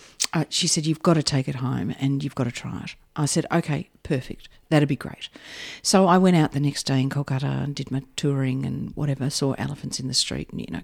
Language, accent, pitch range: English, Australian, 135-185 Hz